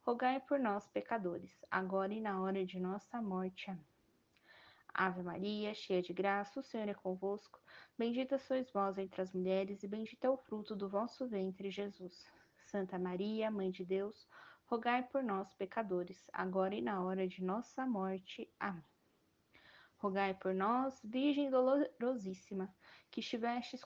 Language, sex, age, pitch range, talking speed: Portuguese, female, 20-39, 190-245 Hz, 150 wpm